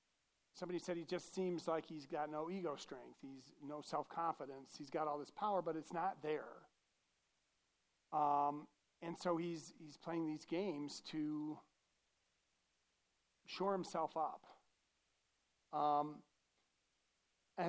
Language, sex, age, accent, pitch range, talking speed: English, male, 40-59, American, 150-190 Hz, 130 wpm